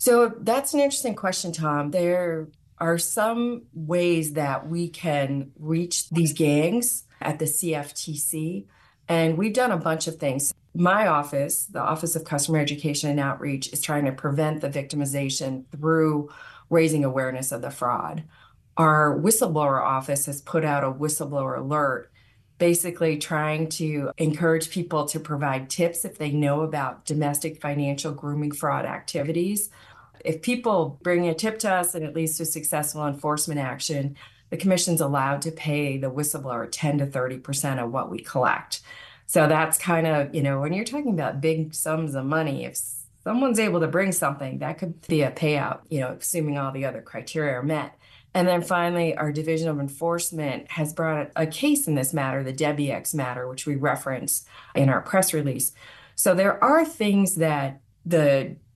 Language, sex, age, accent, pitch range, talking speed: English, female, 40-59, American, 140-170 Hz, 170 wpm